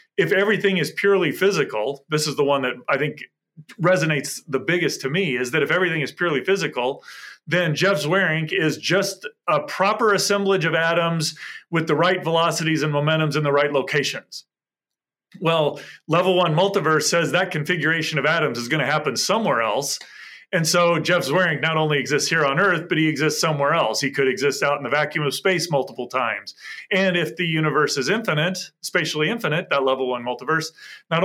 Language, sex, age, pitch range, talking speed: English, male, 30-49, 145-190 Hz, 185 wpm